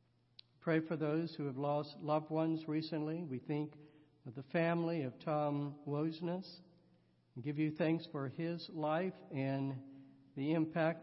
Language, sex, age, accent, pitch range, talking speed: English, male, 60-79, American, 140-165 Hz, 145 wpm